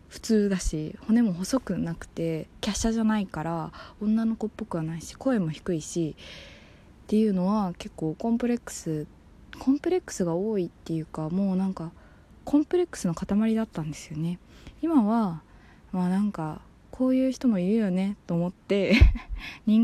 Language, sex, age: Japanese, female, 20-39